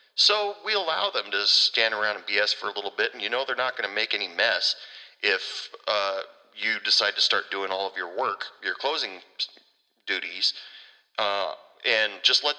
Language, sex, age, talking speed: English, male, 40-59, 195 wpm